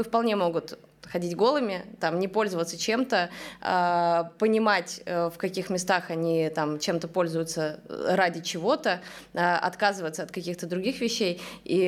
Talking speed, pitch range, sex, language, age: 115 wpm, 175-220 Hz, female, Russian, 20-39